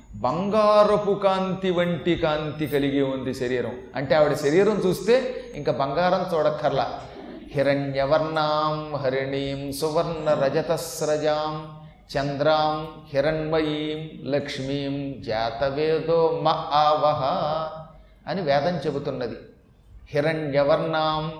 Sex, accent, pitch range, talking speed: male, native, 140-190 Hz, 80 wpm